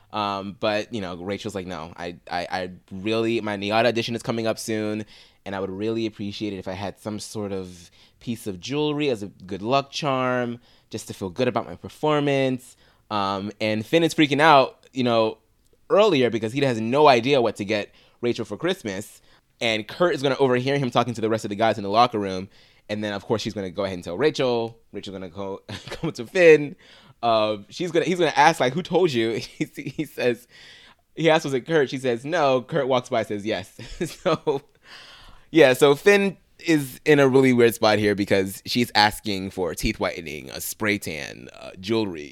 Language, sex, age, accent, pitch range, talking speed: English, male, 20-39, American, 100-125 Hz, 215 wpm